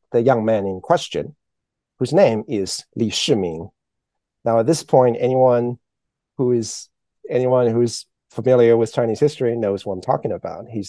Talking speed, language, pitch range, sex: 160 wpm, English, 105-130 Hz, male